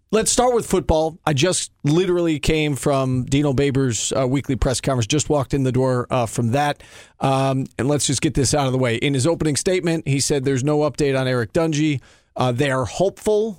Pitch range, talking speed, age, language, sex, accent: 125-155 Hz, 215 wpm, 40-59, English, male, American